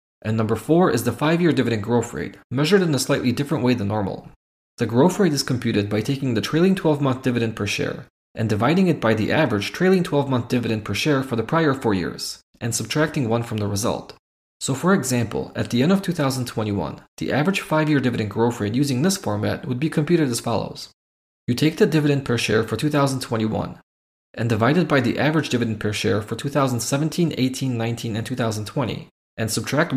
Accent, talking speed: Canadian, 200 wpm